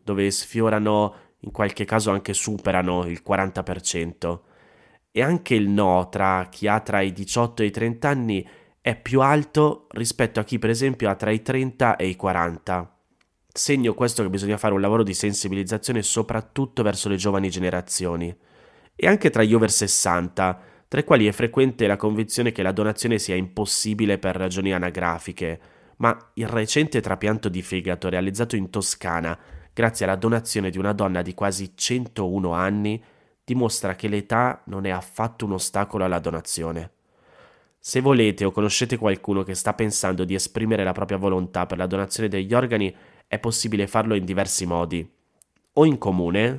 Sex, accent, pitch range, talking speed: male, native, 95-110 Hz, 165 wpm